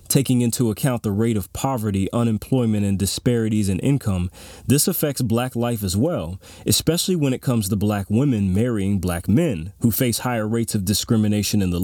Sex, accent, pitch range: male, American, 100-125 Hz